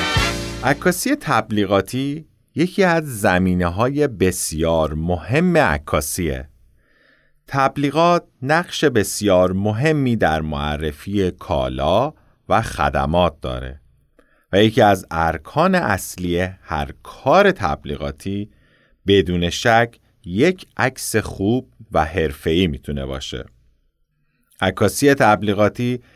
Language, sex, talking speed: Persian, male, 85 wpm